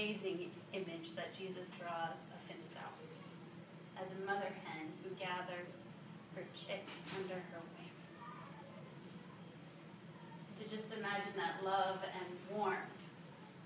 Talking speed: 110 wpm